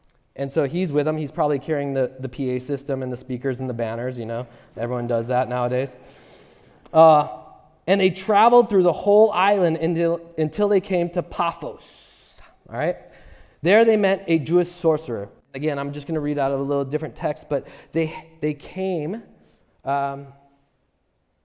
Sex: male